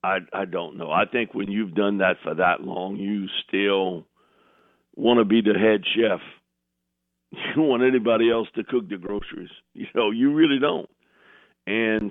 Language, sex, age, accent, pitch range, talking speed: English, male, 50-69, American, 95-120 Hz, 180 wpm